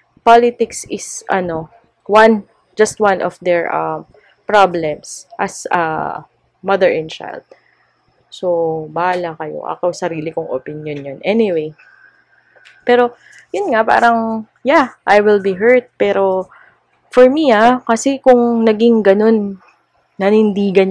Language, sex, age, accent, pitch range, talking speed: Filipino, female, 20-39, native, 175-225 Hz, 125 wpm